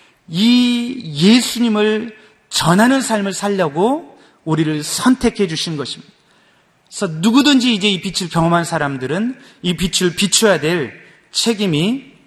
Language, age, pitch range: Korean, 30-49, 160-225 Hz